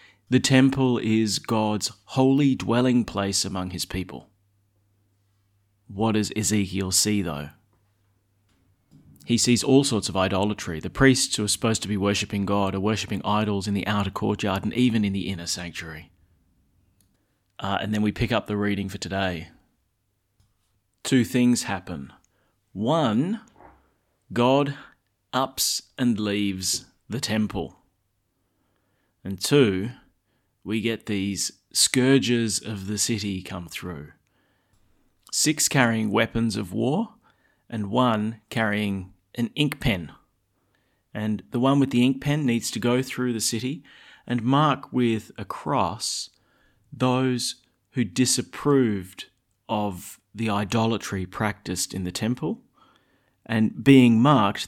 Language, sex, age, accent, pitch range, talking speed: English, male, 30-49, Australian, 100-120 Hz, 125 wpm